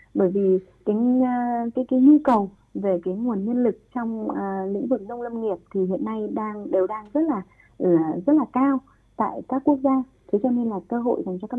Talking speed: 225 wpm